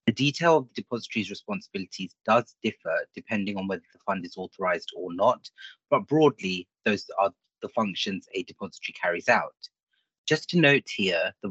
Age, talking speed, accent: 30-49, 165 wpm, British